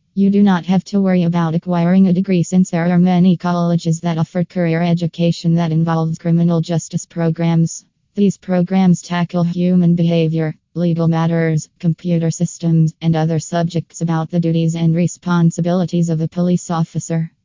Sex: female